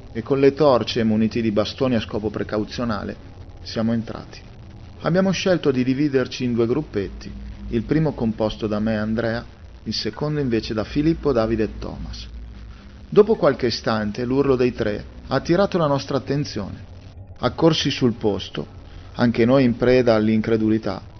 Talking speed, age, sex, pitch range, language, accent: 150 wpm, 40-59, male, 100-140 Hz, Italian, native